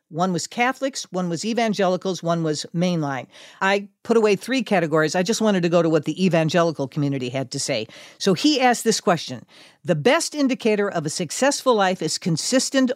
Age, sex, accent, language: 50-69, female, American, English